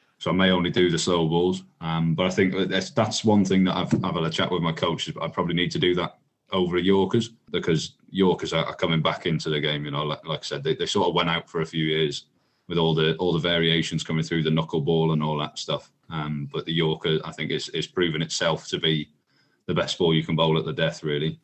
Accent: British